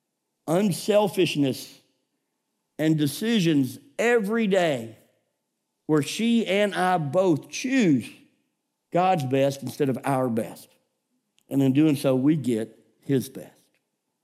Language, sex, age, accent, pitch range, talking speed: English, male, 50-69, American, 155-220 Hz, 105 wpm